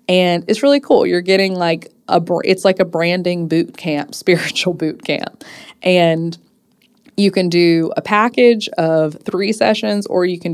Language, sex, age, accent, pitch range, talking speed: English, female, 20-39, American, 160-195 Hz, 165 wpm